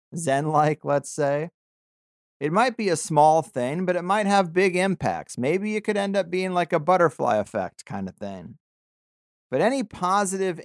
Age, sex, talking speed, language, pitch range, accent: 40-59, male, 180 wpm, English, 125-180 Hz, American